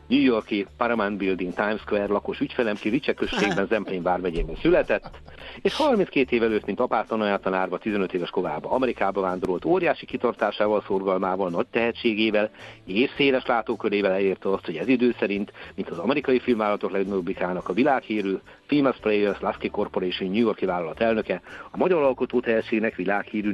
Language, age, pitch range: Hungarian, 60-79, 95-120 Hz